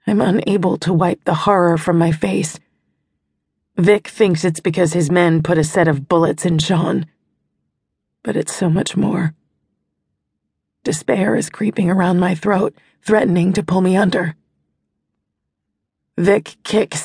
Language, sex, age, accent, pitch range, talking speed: English, female, 30-49, American, 155-195 Hz, 140 wpm